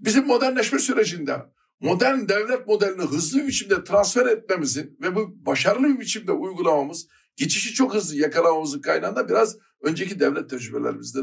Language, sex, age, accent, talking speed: Turkish, male, 60-79, native, 140 wpm